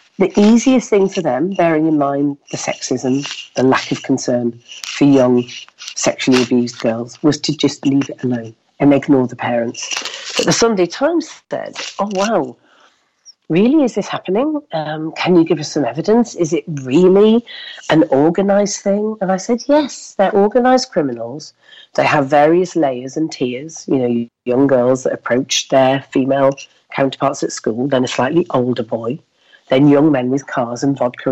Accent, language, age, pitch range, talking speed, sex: British, English, 40-59, 125-170 Hz, 170 wpm, female